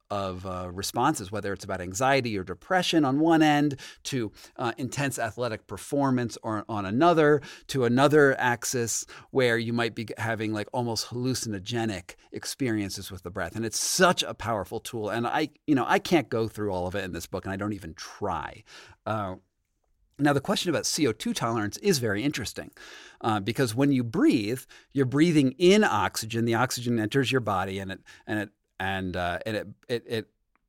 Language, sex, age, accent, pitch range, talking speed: English, male, 40-59, American, 105-135 Hz, 185 wpm